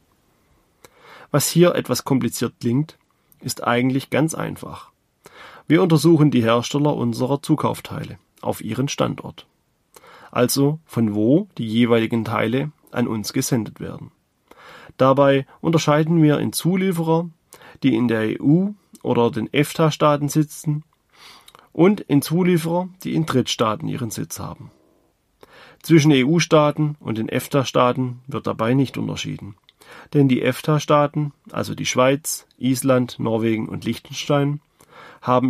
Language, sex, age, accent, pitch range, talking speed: German, male, 30-49, German, 120-155 Hz, 120 wpm